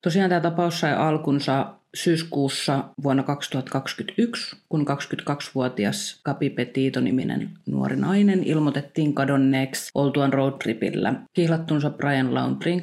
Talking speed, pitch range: 100 wpm, 130-165 Hz